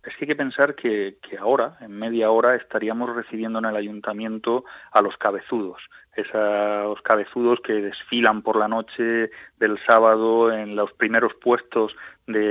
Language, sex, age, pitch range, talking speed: Spanish, male, 30-49, 105-115 Hz, 160 wpm